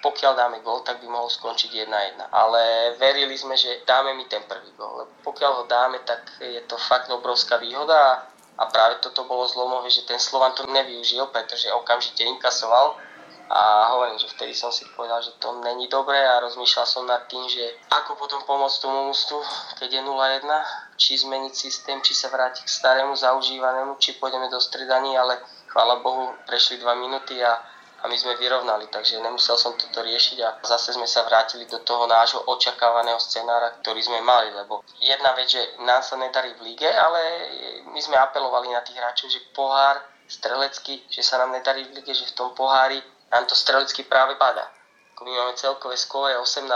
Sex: male